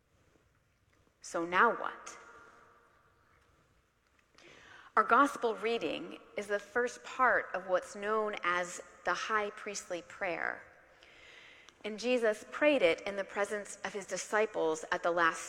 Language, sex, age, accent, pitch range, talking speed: English, female, 30-49, American, 175-220 Hz, 120 wpm